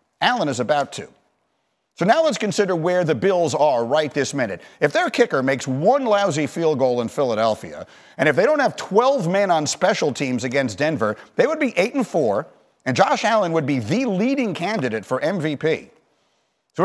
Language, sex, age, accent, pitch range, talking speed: English, male, 50-69, American, 150-215 Hz, 190 wpm